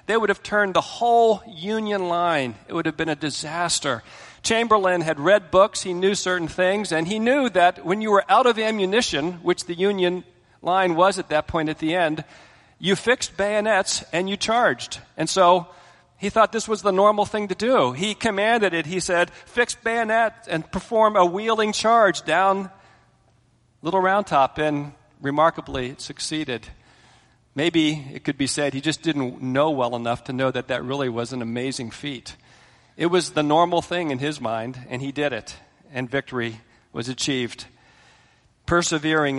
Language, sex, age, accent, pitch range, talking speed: English, male, 40-59, American, 135-190 Hz, 180 wpm